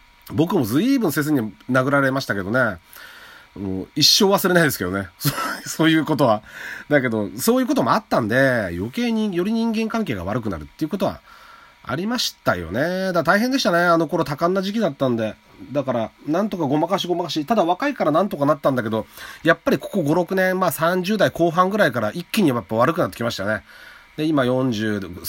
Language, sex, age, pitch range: Japanese, male, 30-49, 110-185 Hz